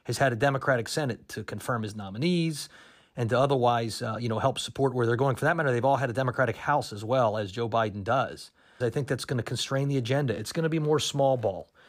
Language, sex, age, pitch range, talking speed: English, male, 30-49, 115-135 Hz, 250 wpm